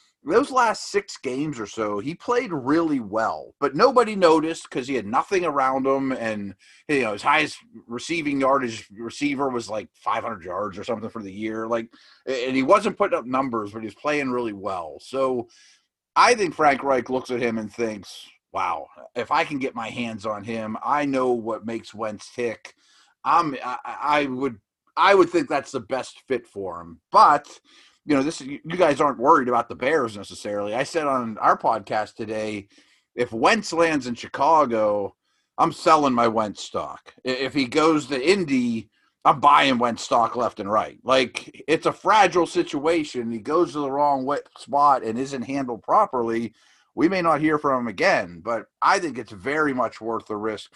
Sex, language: male, English